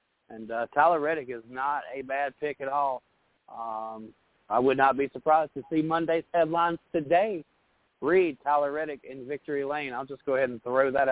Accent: American